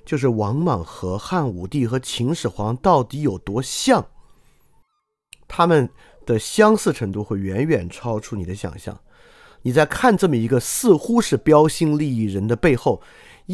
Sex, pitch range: male, 100-135 Hz